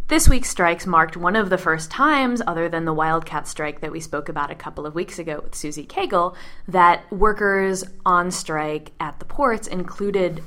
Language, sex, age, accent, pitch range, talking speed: English, female, 20-39, American, 160-190 Hz, 195 wpm